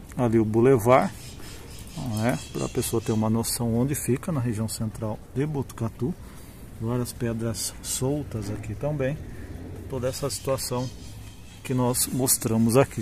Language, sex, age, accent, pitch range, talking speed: Portuguese, male, 40-59, Brazilian, 115-135 Hz, 135 wpm